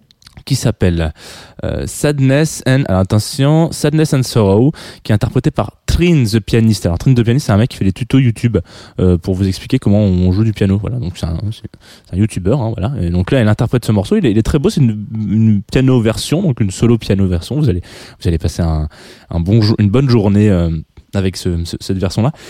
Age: 20-39